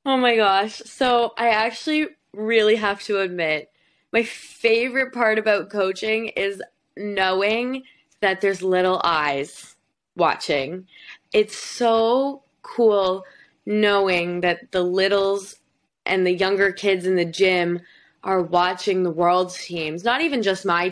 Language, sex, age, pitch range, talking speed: English, female, 20-39, 175-215 Hz, 130 wpm